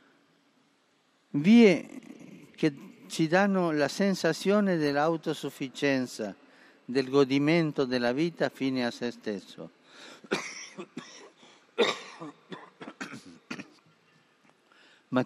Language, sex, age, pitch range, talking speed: Italian, male, 50-69, 120-155 Hz, 65 wpm